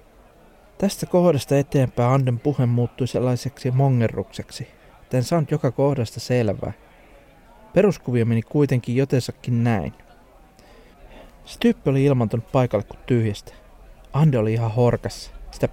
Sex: male